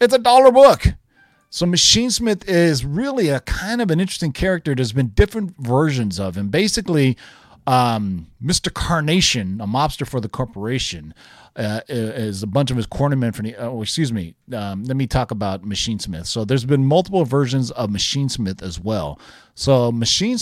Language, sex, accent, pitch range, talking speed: English, male, American, 110-155 Hz, 180 wpm